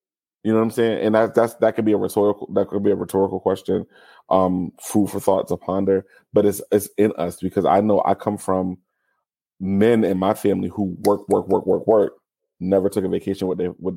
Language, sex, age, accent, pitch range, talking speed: English, male, 20-39, American, 95-105 Hz, 230 wpm